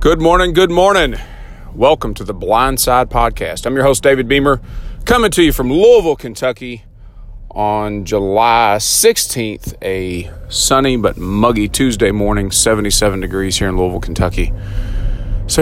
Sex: male